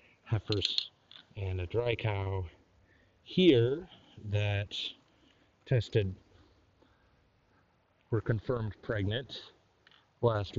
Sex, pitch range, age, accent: male, 100-125 Hz, 30-49, American